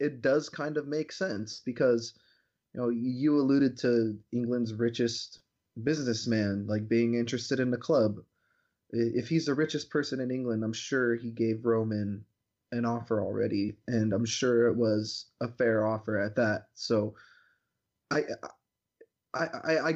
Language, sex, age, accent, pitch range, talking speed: English, male, 20-39, American, 115-140 Hz, 150 wpm